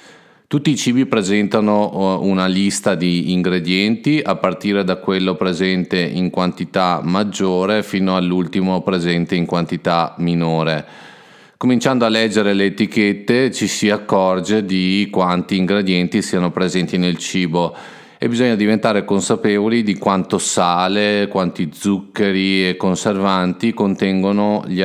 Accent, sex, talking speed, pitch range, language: native, male, 120 wpm, 90-105 Hz, Italian